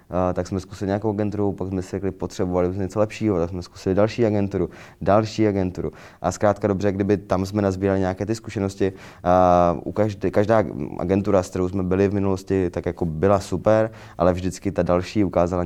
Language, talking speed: Czech, 190 wpm